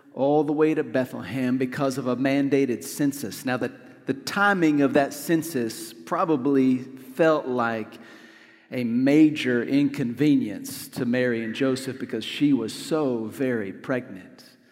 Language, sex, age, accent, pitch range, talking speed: English, male, 40-59, American, 130-170 Hz, 135 wpm